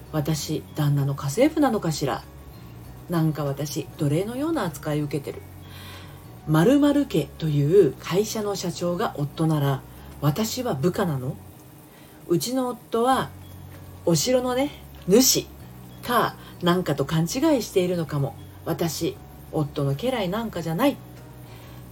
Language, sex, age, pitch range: Japanese, female, 40-59, 145-215 Hz